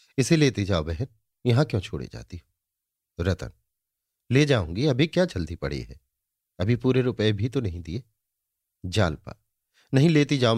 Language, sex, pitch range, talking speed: Hindi, male, 85-115 Hz, 155 wpm